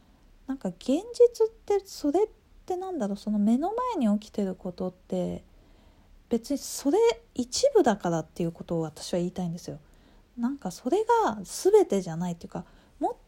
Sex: female